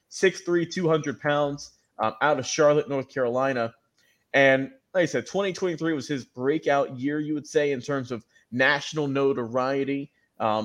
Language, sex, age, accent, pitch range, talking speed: English, male, 20-39, American, 130-155 Hz, 150 wpm